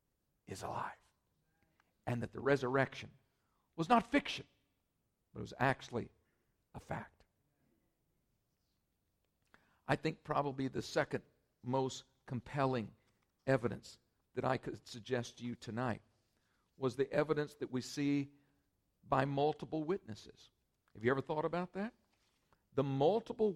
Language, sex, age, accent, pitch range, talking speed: English, male, 50-69, American, 110-160 Hz, 120 wpm